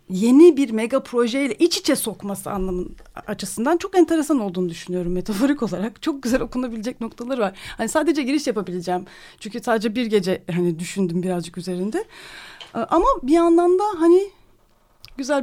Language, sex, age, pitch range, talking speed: Turkish, female, 40-59, 185-270 Hz, 150 wpm